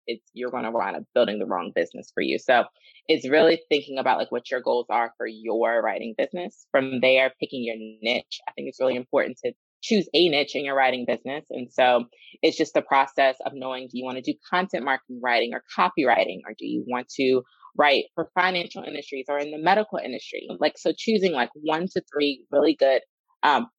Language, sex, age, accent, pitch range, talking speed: English, female, 20-39, American, 130-180 Hz, 215 wpm